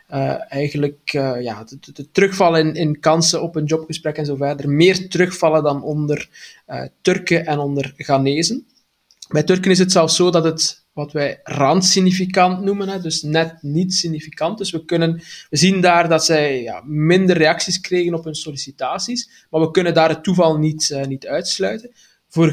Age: 20-39